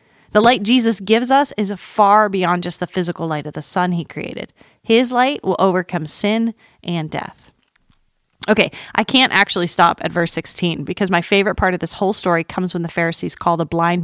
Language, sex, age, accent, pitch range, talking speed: English, female, 30-49, American, 170-230 Hz, 200 wpm